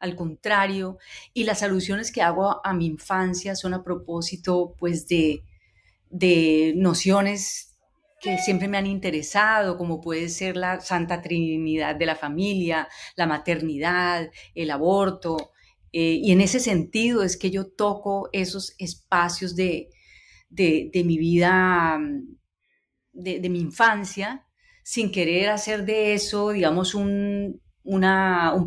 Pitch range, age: 165-200 Hz, 30-49